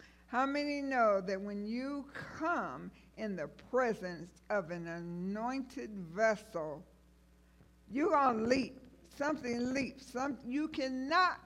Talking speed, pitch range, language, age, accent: 120 wpm, 180-255 Hz, English, 60-79, American